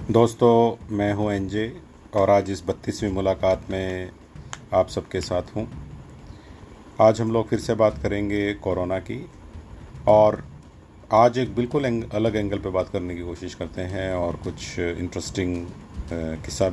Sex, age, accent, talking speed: male, 40-59, native, 145 wpm